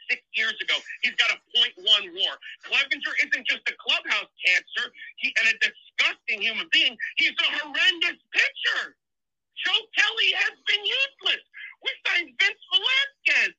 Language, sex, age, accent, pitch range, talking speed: English, male, 40-59, American, 295-435 Hz, 140 wpm